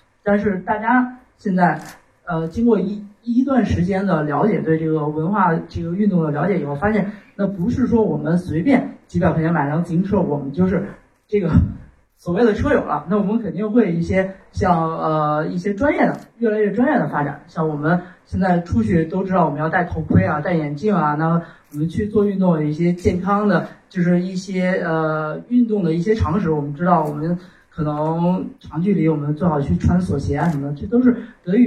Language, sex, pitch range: Chinese, male, 160-210 Hz